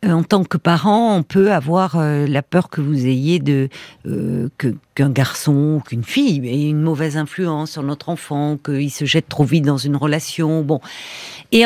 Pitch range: 160-225 Hz